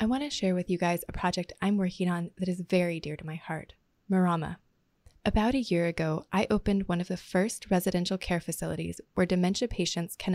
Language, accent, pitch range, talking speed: English, American, 170-200 Hz, 210 wpm